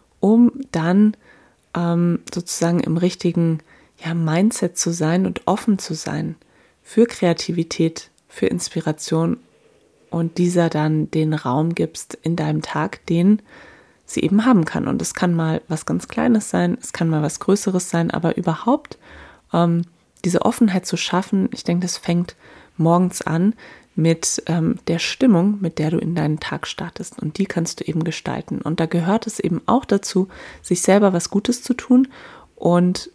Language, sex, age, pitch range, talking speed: German, female, 20-39, 165-200 Hz, 160 wpm